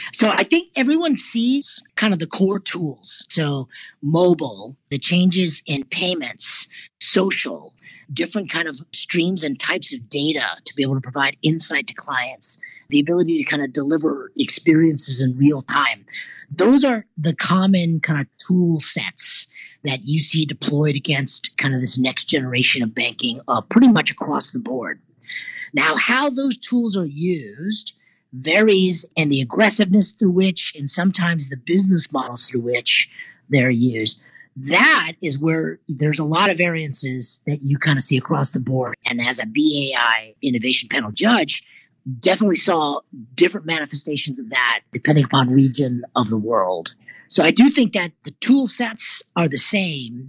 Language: English